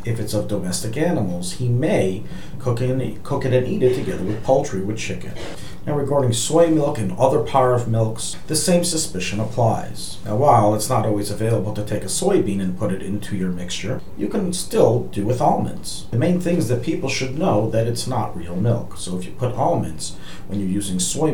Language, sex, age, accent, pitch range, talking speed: English, male, 40-59, American, 105-145 Hz, 210 wpm